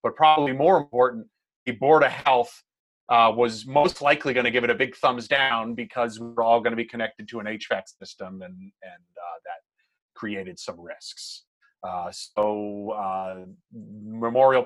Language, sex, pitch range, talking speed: English, male, 115-150 Hz, 175 wpm